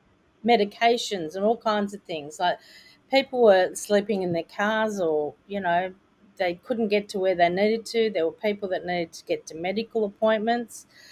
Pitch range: 175-215 Hz